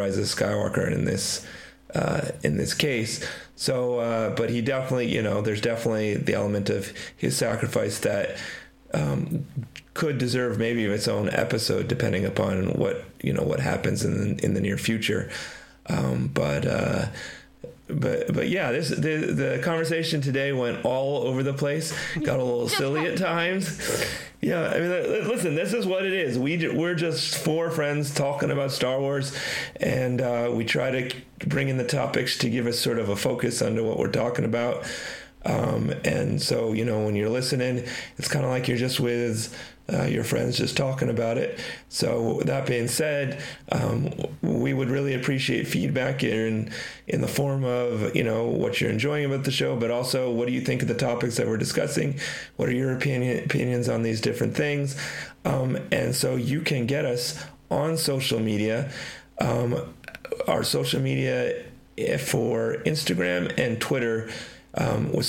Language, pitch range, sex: English, 115-145 Hz, male